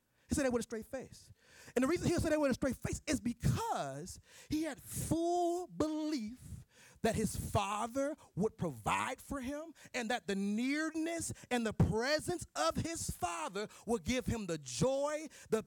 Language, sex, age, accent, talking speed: English, male, 30-49, American, 175 wpm